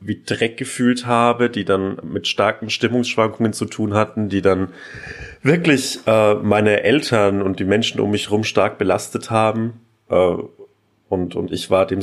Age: 30-49